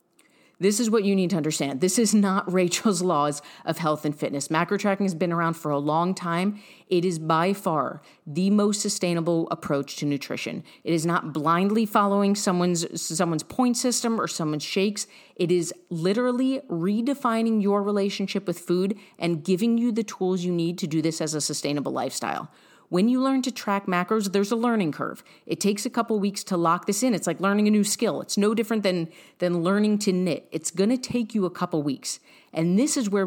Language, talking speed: English, 205 wpm